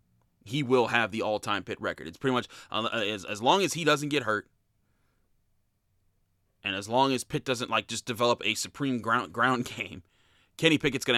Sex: male